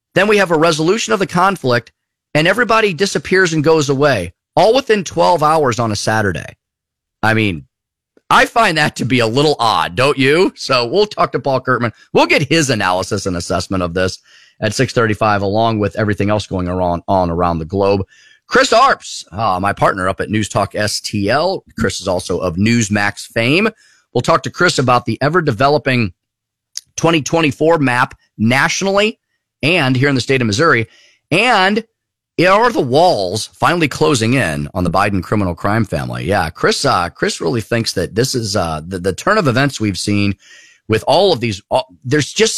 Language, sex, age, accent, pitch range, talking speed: English, male, 30-49, American, 100-155 Hz, 180 wpm